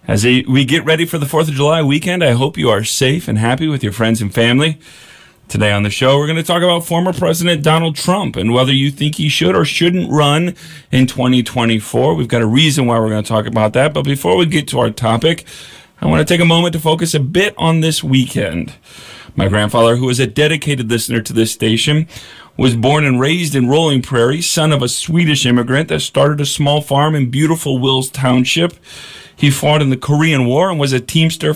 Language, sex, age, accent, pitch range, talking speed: English, male, 40-59, American, 115-155 Hz, 225 wpm